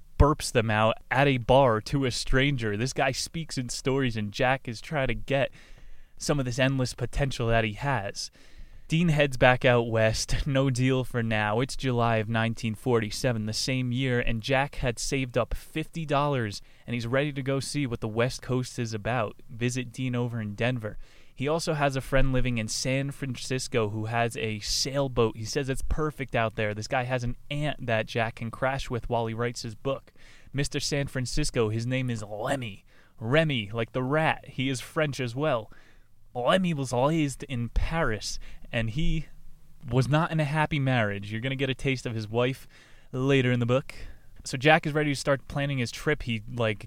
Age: 20-39